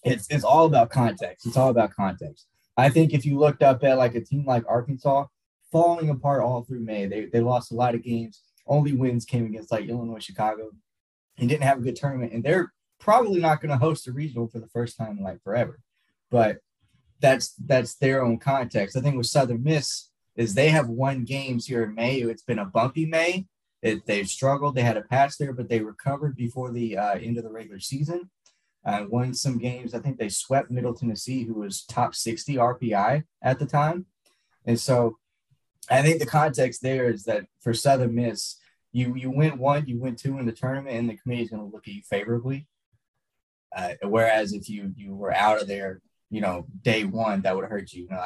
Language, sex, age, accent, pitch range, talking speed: English, male, 20-39, American, 115-135 Hz, 215 wpm